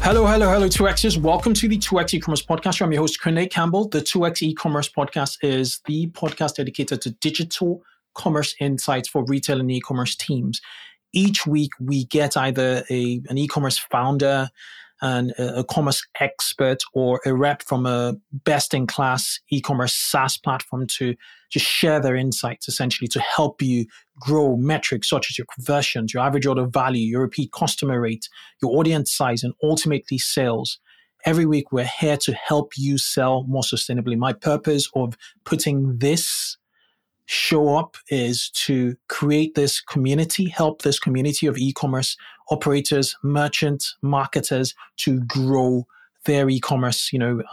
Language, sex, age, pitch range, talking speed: English, male, 30-49, 130-155 Hz, 150 wpm